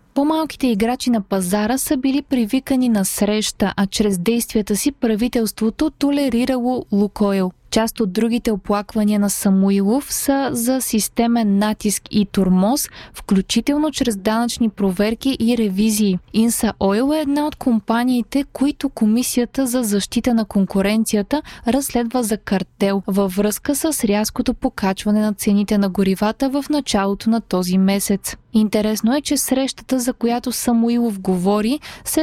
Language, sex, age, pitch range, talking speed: Bulgarian, female, 20-39, 205-260 Hz, 135 wpm